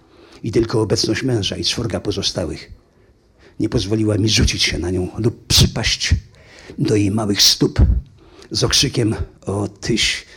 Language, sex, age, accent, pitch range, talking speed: Polish, male, 50-69, native, 95-120 Hz, 140 wpm